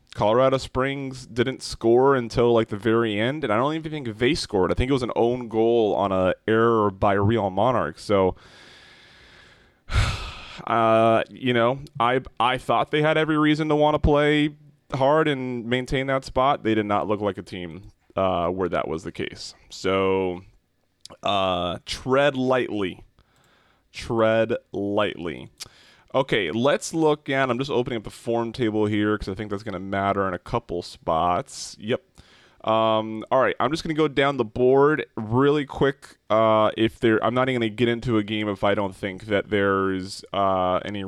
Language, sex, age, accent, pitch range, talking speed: English, male, 20-39, American, 100-130 Hz, 180 wpm